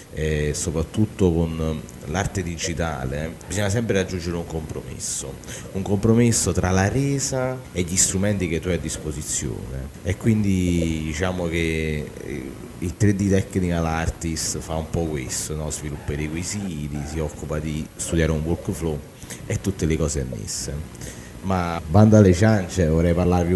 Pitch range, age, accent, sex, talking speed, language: 80-95 Hz, 30-49, native, male, 140 wpm, Italian